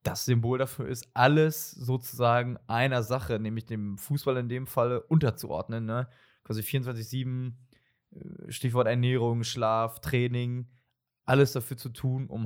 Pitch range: 110-130 Hz